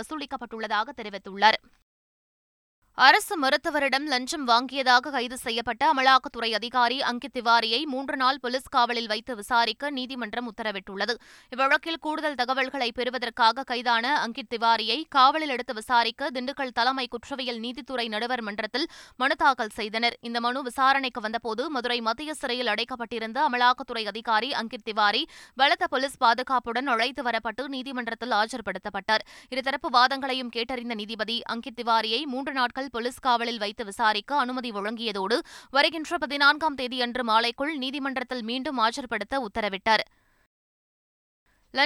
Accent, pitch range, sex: native, 230-270 Hz, female